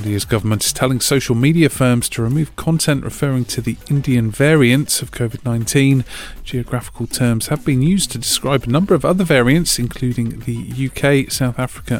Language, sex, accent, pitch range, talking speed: English, male, British, 115-140 Hz, 170 wpm